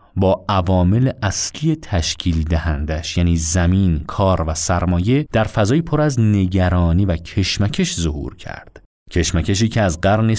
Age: 30-49